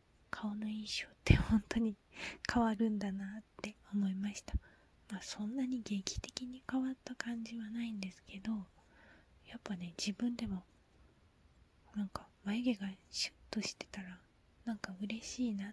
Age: 20-39